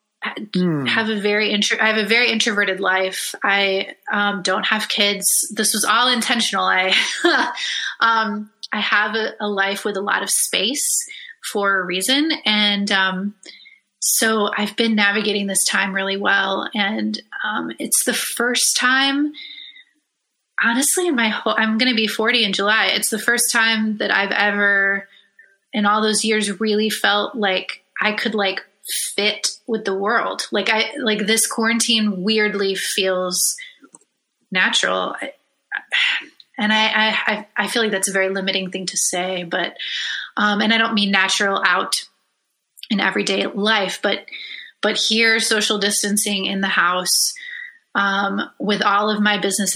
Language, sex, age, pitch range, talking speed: English, female, 20-39, 195-225 Hz, 155 wpm